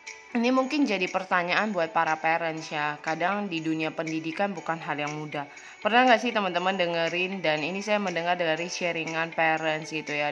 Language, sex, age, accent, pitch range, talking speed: Indonesian, female, 20-39, native, 165-220 Hz, 175 wpm